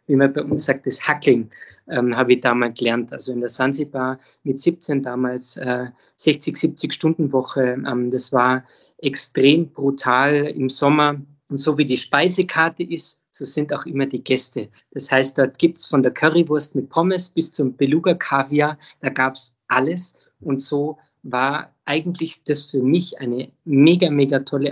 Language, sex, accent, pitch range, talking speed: German, male, German, 130-150 Hz, 170 wpm